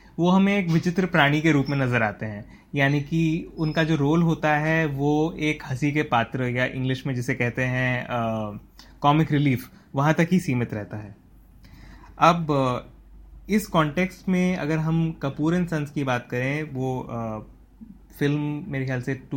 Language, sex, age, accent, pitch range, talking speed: Hindi, male, 20-39, native, 120-160 Hz, 165 wpm